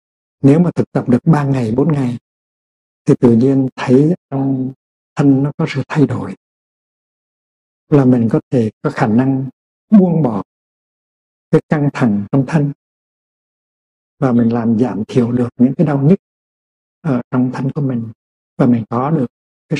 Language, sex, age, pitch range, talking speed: Vietnamese, male, 60-79, 125-155 Hz, 165 wpm